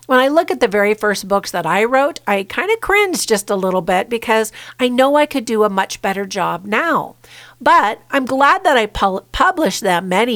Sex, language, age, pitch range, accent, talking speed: female, English, 50-69, 190-255 Hz, American, 220 wpm